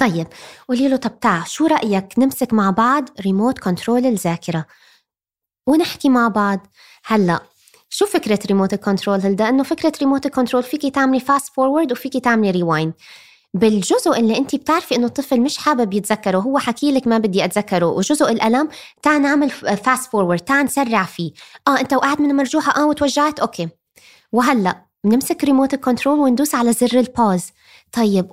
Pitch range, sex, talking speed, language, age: 210-275 Hz, female, 150 wpm, Arabic, 20-39